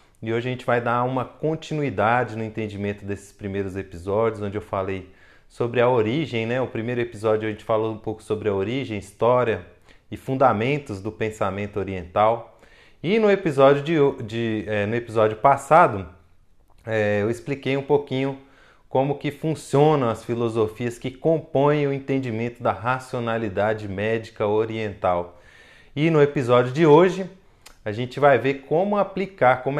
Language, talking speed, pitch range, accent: Portuguese, 155 wpm, 100-125 Hz, Brazilian